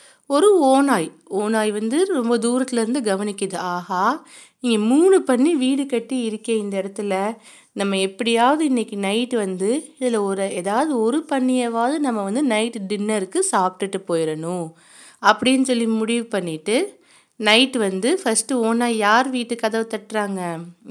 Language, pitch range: Tamil, 200-255 Hz